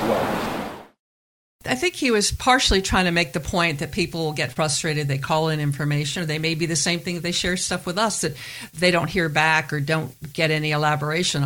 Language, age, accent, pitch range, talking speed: English, 50-69, American, 145-170 Hz, 210 wpm